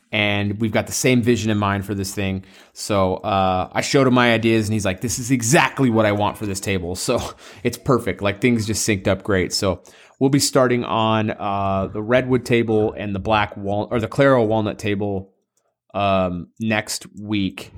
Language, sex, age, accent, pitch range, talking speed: English, male, 30-49, American, 100-125 Hz, 205 wpm